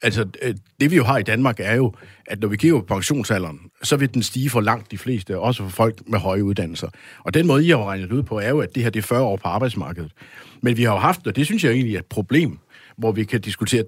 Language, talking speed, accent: Danish, 280 wpm, native